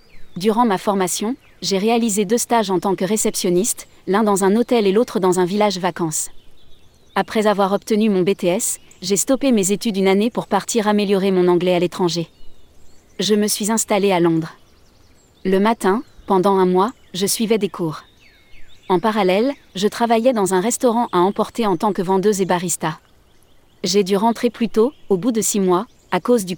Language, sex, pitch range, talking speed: French, female, 185-225 Hz, 185 wpm